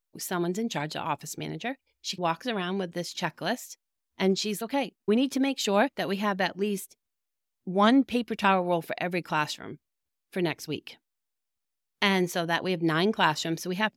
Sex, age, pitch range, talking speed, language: female, 30-49, 160-205 Hz, 195 wpm, English